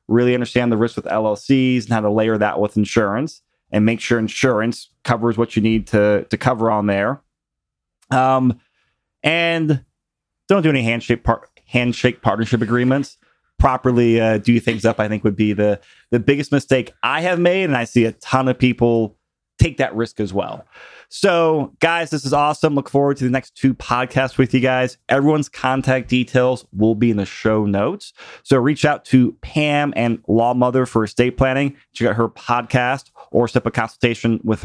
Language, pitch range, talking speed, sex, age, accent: English, 115-135 Hz, 185 wpm, male, 30-49, American